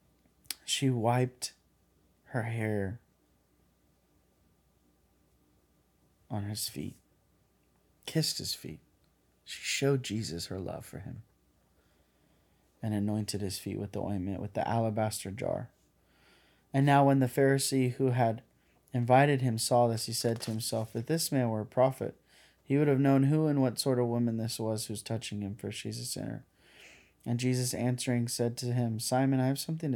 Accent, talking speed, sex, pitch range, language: American, 155 wpm, male, 110-130 Hz, English